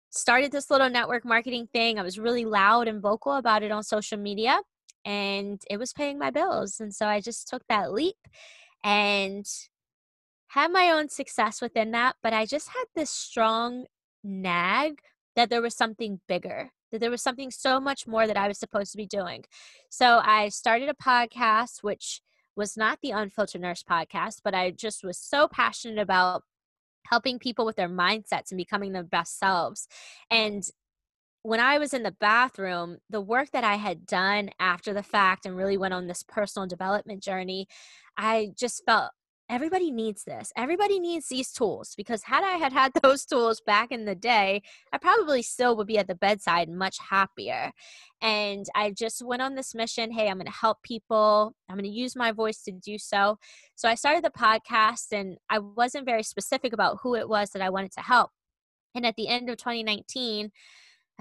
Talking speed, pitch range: 190 wpm, 200-250 Hz